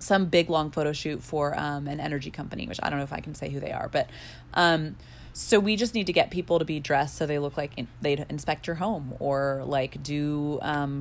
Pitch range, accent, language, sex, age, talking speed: 145-195 Hz, American, English, female, 20-39, 250 wpm